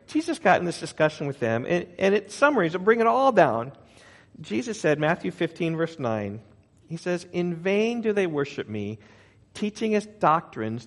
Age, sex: 40-59, male